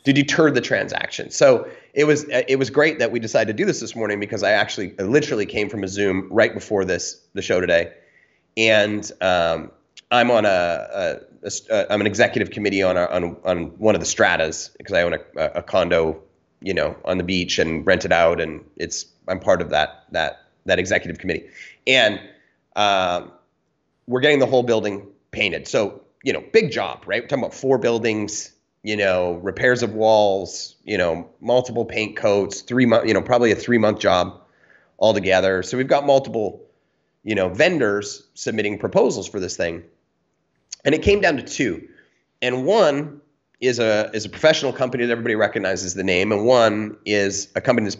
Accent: American